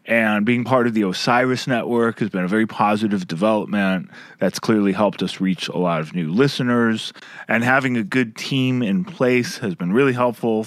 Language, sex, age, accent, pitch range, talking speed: English, male, 30-49, American, 115-145 Hz, 190 wpm